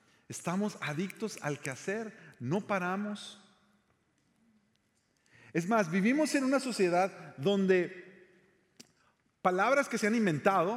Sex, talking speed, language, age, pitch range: male, 100 wpm, Spanish, 50-69, 170-225 Hz